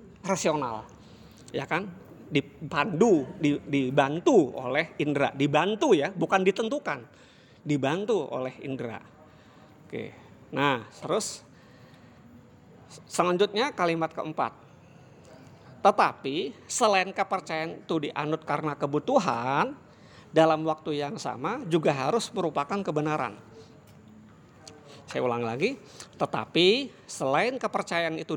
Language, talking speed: Indonesian, 90 wpm